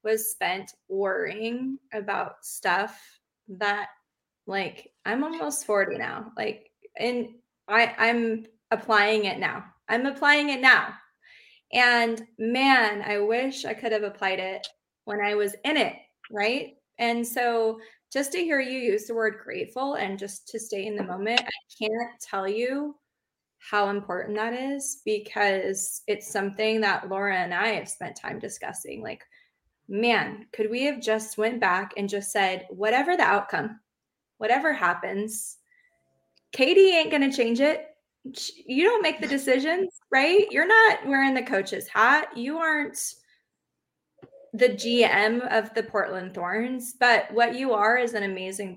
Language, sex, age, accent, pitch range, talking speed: English, female, 20-39, American, 205-265 Hz, 150 wpm